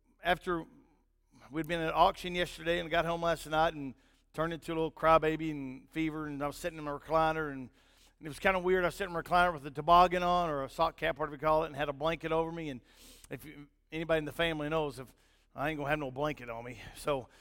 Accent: American